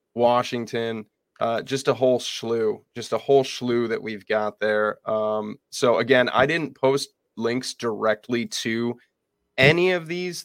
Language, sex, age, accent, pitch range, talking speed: English, male, 20-39, American, 110-125 Hz, 150 wpm